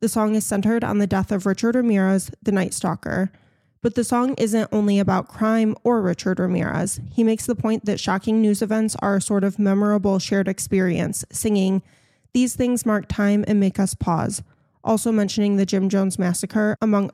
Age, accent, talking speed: 20-39, American, 190 wpm